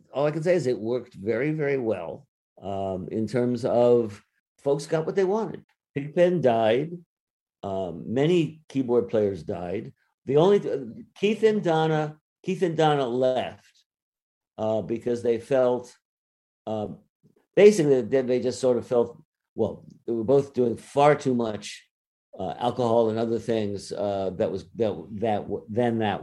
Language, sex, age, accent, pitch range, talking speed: English, male, 50-69, American, 105-140 Hz, 155 wpm